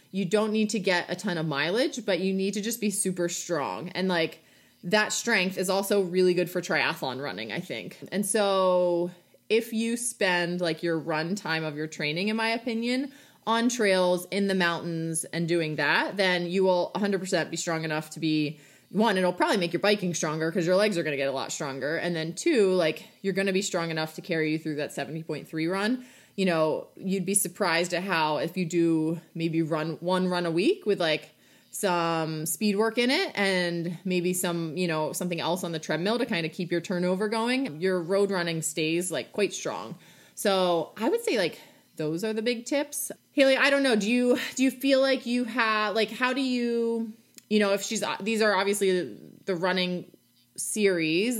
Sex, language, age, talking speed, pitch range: female, English, 20-39, 210 wpm, 165-215 Hz